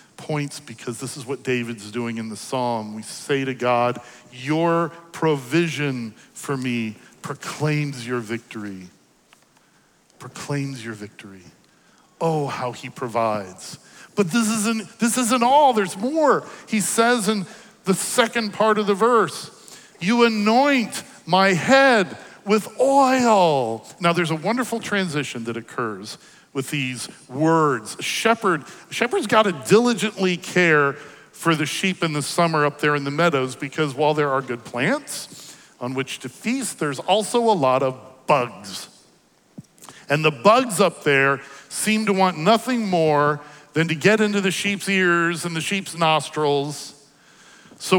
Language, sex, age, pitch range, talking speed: English, male, 50-69, 135-210 Hz, 145 wpm